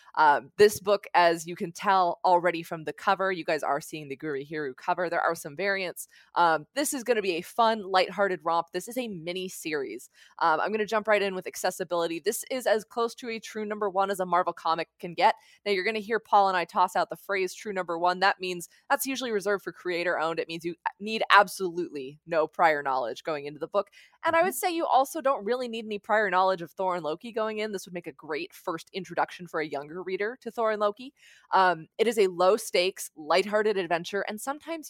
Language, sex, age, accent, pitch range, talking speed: English, female, 20-39, American, 165-210 Hz, 240 wpm